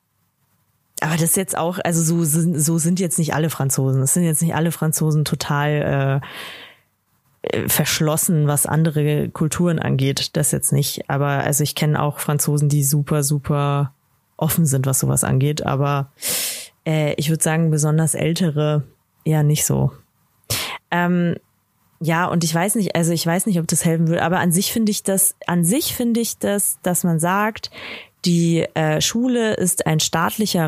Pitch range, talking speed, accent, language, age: 150-180 Hz, 170 wpm, German, German, 20-39